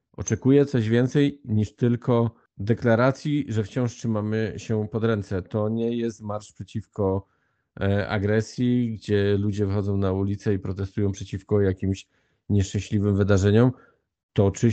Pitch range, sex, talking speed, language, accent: 100-115 Hz, male, 120 wpm, Polish, native